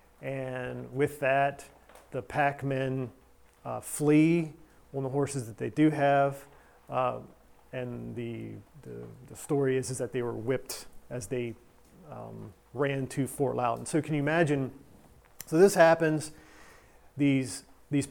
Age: 40-59